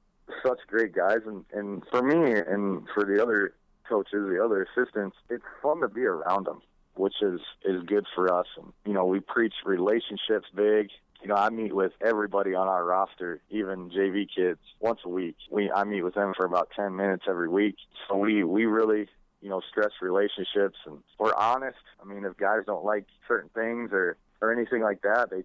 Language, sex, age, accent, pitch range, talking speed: English, male, 30-49, American, 95-110 Hz, 200 wpm